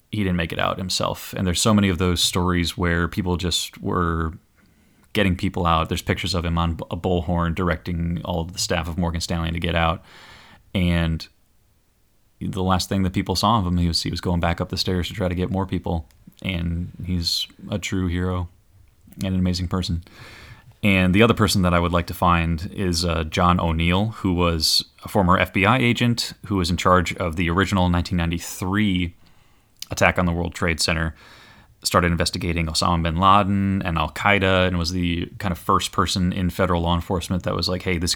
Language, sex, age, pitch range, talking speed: English, male, 20-39, 85-100 Hz, 200 wpm